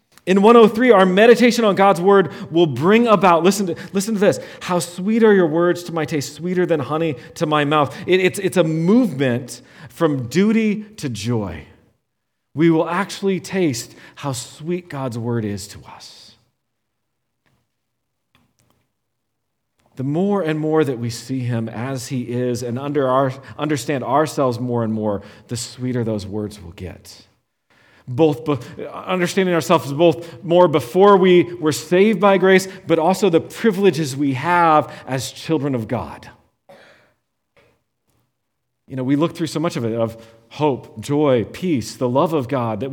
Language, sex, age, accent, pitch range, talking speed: English, male, 40-59, American, 125-175 Hz, 160 wpm